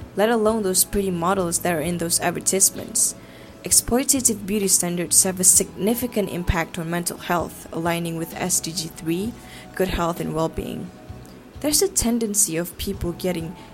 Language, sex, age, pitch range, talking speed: English, female, 10-29, 175-220 Hz, 150 wpm